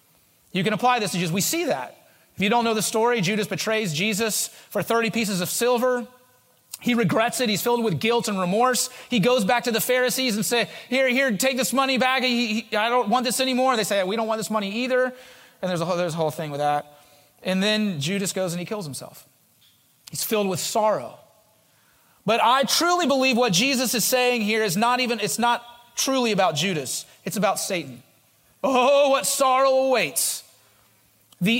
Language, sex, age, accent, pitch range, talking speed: English, male, 30-49, American, 185-250 Hz, 205 wpm